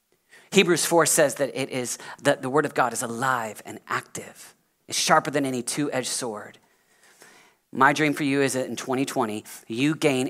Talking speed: 180 wpm